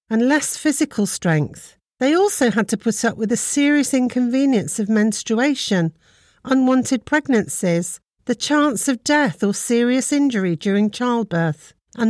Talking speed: 140 wpm